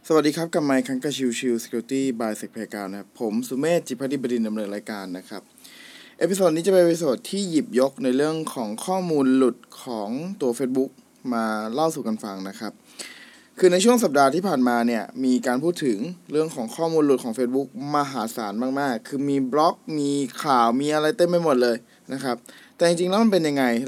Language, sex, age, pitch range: Thai, male, 20-39, 120-175 Hz